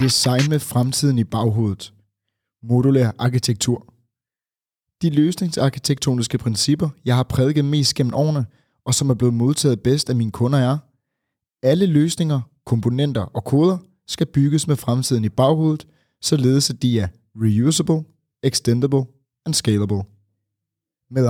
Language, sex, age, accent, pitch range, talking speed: Danish, male, 30-49, native, 110-140 Hz, 130 wpm